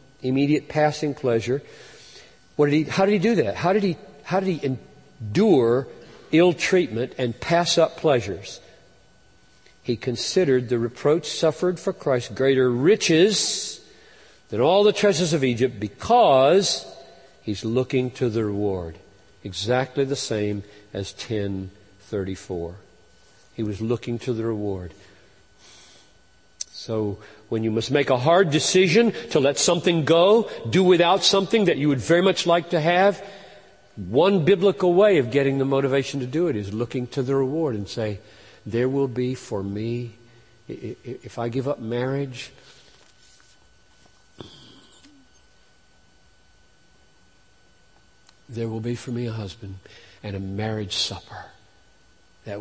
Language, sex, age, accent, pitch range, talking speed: English, male, 50-69, American, 105-155 Hz, 135 wpm